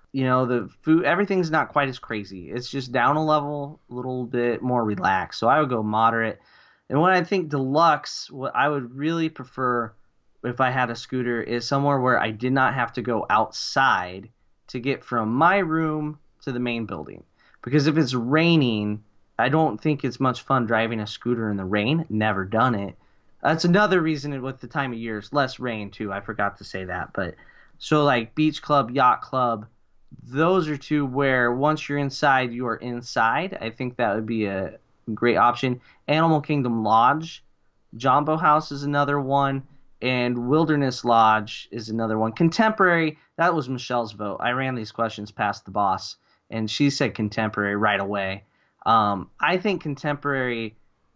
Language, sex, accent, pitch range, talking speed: English, male, American, 115-150 Hz, 180 wpm